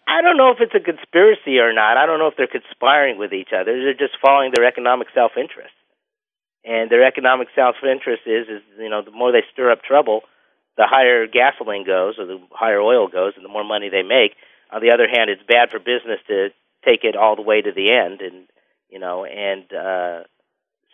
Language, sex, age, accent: English, male, 40-59, American